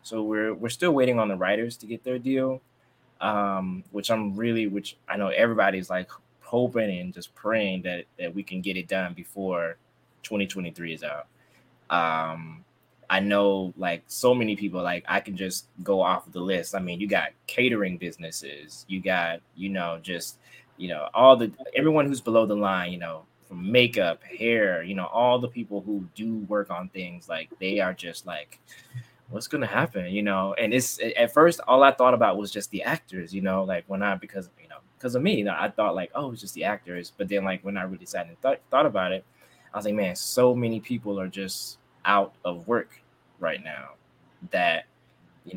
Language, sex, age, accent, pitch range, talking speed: English, male, 20-39, American, 95-120 Hz, 210 wpm